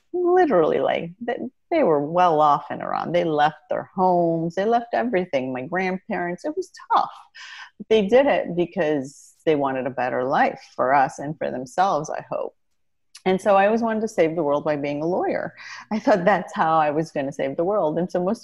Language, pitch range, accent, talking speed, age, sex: English, 140-205 Hz, American, 205 wpm, 40-59, female